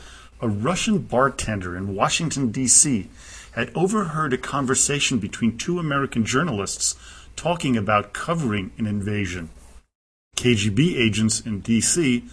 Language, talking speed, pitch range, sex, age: English, 110 wpm, 100-135 Hz, male, 40-59